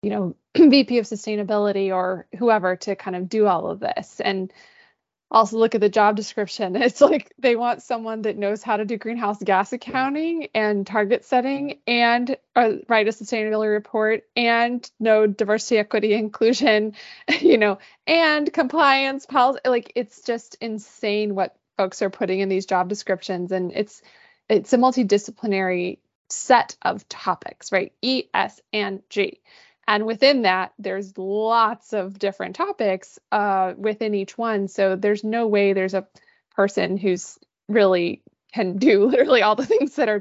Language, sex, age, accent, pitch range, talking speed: English, female, 20-39, American, 195-235 Hz, 160 wpm